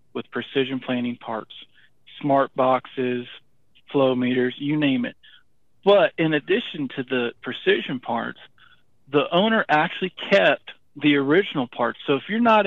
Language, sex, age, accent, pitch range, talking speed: English, male, 40-59, American, 125-150 Hz, 135 wpm